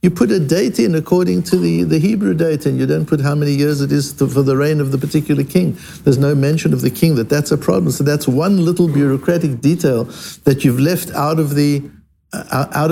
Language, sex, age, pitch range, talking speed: English, male, 60-79, 130-165 Hz, 235 wpm